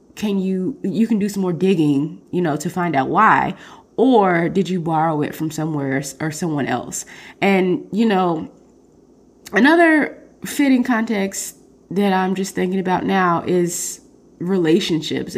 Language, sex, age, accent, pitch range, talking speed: English, female, 20-39, American, 160-190 Hz, 150 wpm